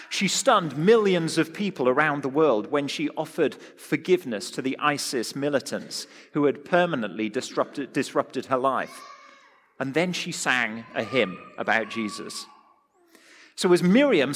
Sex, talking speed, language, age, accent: male, 140 wpm, English, 40-59, British